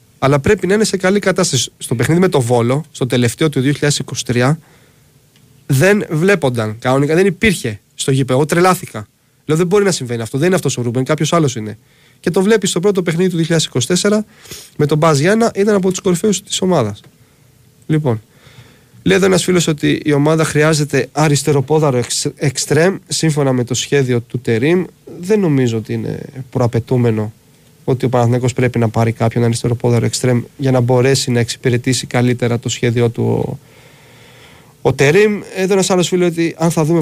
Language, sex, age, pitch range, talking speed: Greek, male, 30-49, 125-165 Hz, 170 wpm